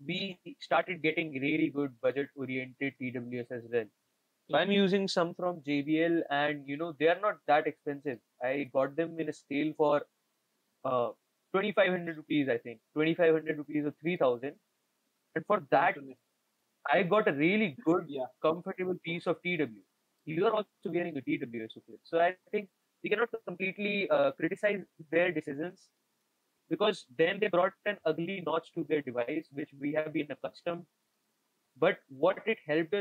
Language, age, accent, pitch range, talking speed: English, 20-39, Indian, 150-185 Hz, 160 wpm